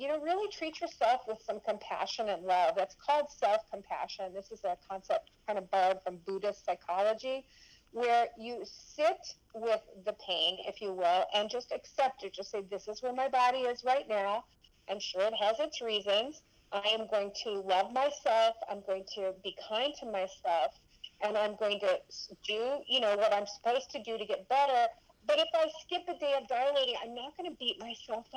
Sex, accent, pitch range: female, American, 205-285 Hz